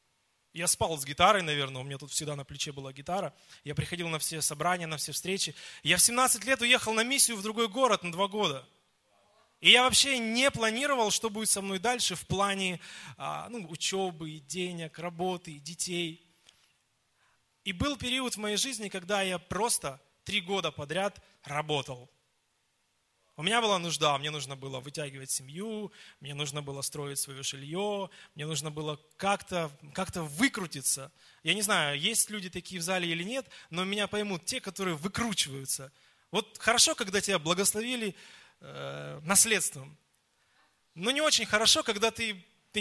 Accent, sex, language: native, male, Russian